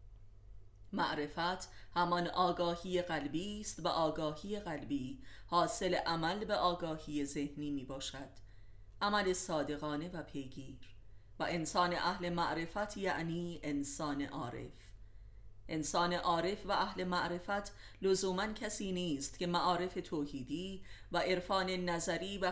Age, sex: 30-49, female